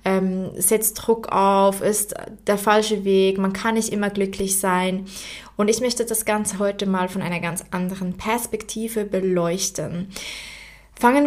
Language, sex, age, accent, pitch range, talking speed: German, female, 20-39, German, 195-230 Hz, 145 wpm